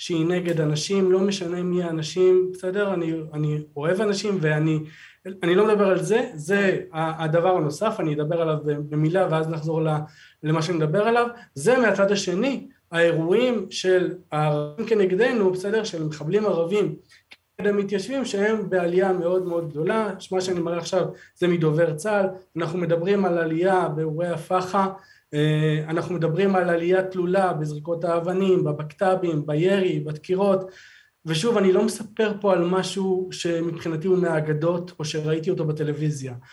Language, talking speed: Hebrew, 140 wpm